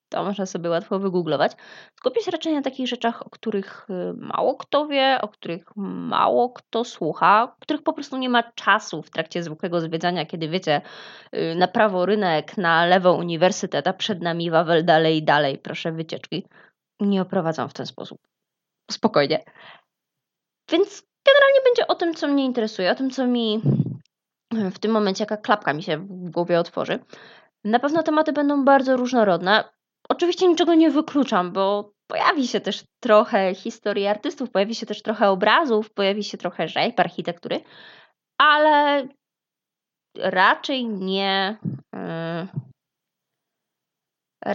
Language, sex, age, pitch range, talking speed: Polish, female, 20-39, 180-250 Hz, 140 wpm